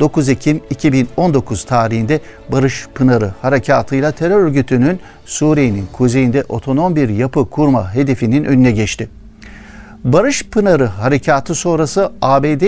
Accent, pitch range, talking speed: native, 120-150 Hz, 115 wpm